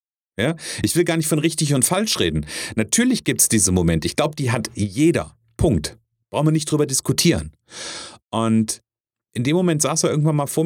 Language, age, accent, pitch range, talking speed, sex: German, 40-59, German, 115-155 Hz, 190 wpm, male